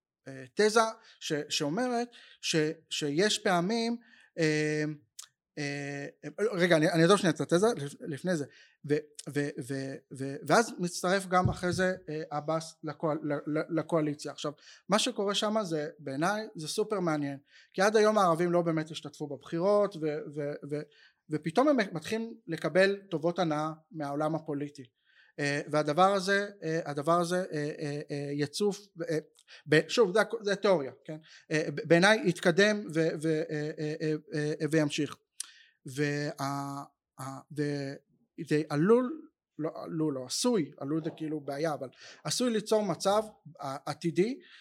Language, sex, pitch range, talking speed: Hebrew, male, 150-200 Hz, 110 wpm